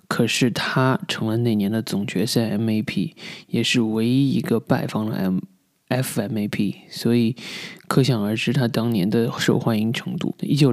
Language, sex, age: Chinese, male, 20-39